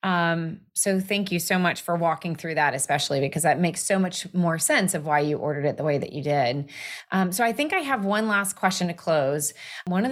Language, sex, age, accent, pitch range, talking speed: English, female, 30-49, American, 160-205 Hz, 245 wpm